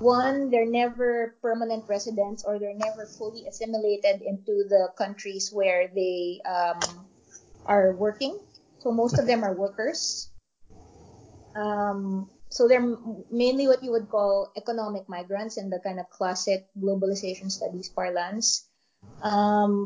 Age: 20-39